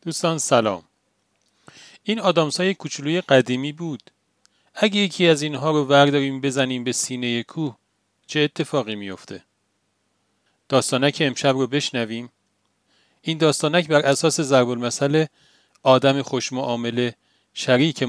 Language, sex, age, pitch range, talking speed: Persian, male, 40-59, 115-155 Hz, 110 wpm